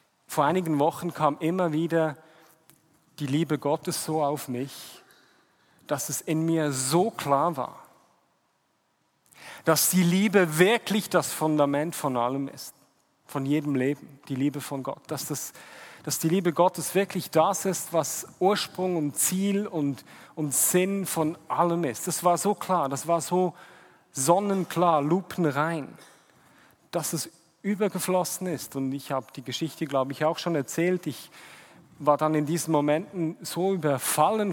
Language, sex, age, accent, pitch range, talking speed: German, male, 40-59, German, 150-175 Hz, 150 wpm